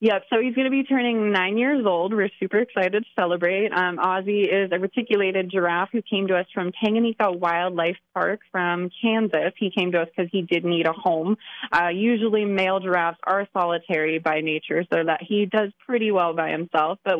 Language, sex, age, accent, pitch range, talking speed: English, female, 20-39, American, 175-215 Hz, 200 wpm